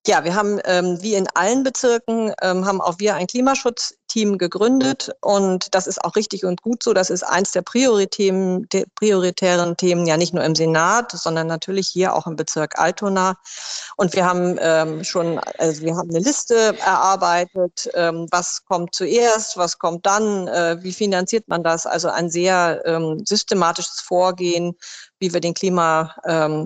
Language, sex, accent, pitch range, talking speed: German, female, German, 165-195 Hz, 170 wpm